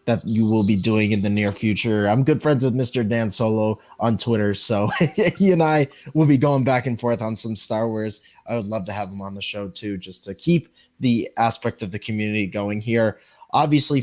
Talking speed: 225 wpm